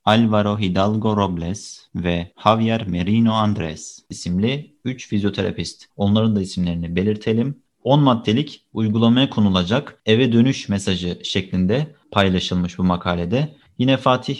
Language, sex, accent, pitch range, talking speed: Turkish, male, native, 100-125 Hz, 115 wpm